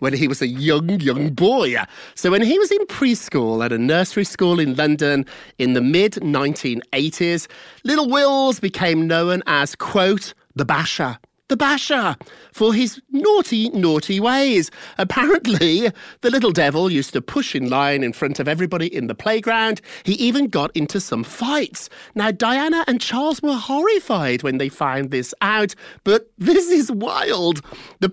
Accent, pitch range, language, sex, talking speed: British, 140-235 Hz, English, male, 160 wpm